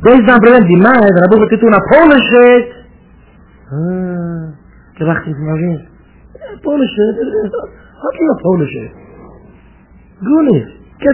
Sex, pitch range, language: male, 170-255 Hz, English